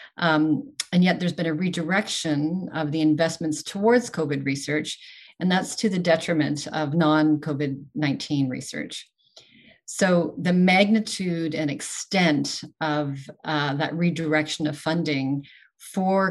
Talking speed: 120 wpm